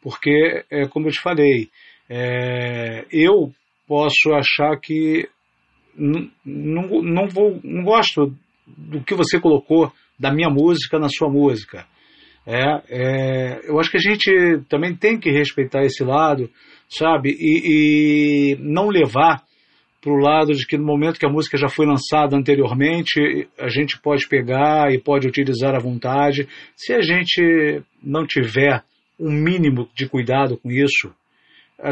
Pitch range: 135-155 Hz